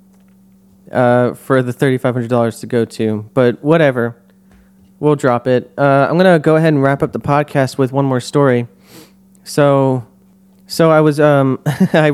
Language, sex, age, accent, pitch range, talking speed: English, male, 30-49, American, 130-185 Hz, 165 wpm